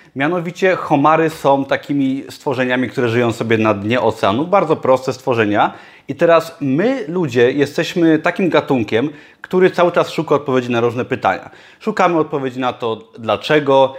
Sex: male